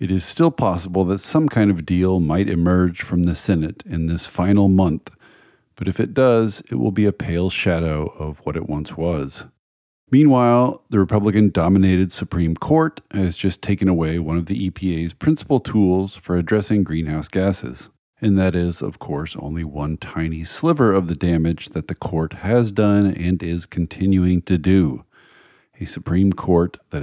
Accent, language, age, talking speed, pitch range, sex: American, English, 40-59, 175 wpm, 85-105 Hz, male